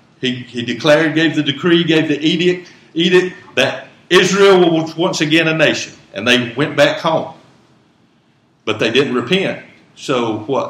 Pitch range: 120-150 Hz